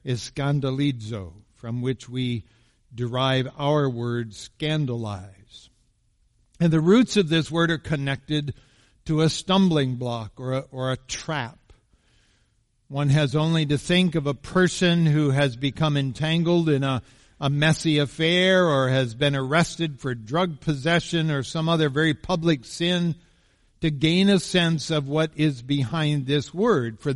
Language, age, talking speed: English, 60-79, 150 wpm